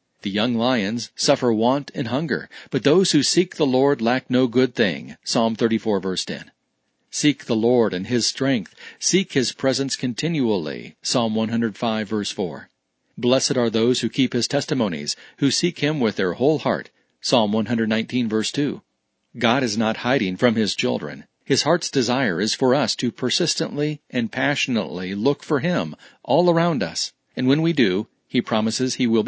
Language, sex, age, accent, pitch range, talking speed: English, male, 40-59, American, 115-140 Hz, 170 wpm